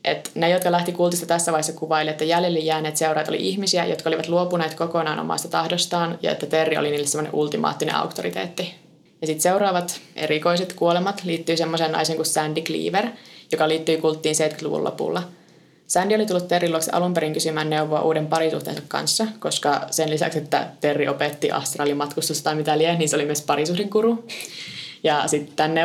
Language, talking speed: Finnish, 170 wpm